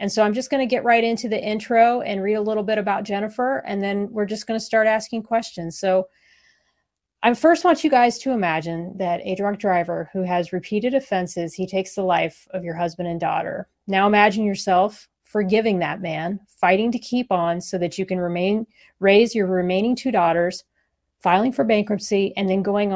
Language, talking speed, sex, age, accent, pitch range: English, 205 wpm, female, 30-49, American, 185-225 Hz